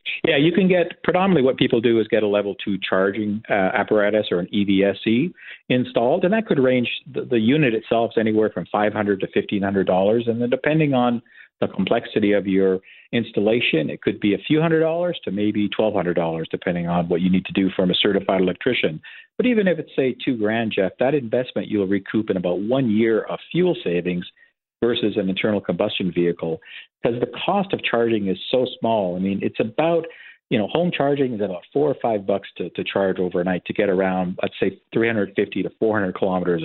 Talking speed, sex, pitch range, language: 200 wpm, male, 95-120 Hz, English